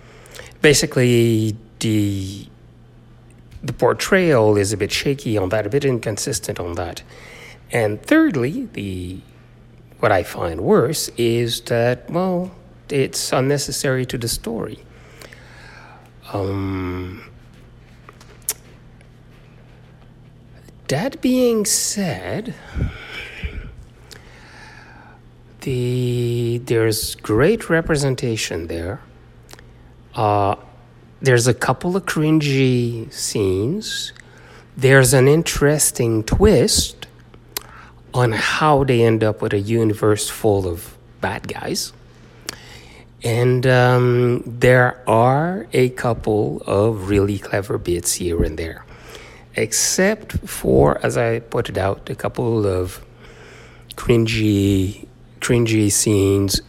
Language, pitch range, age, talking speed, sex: English, 100-130 Hz, 60-79, 90 wpm, male